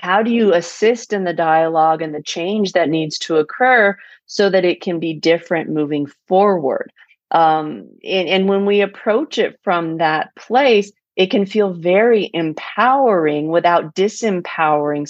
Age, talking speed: 30-49, 155 wpm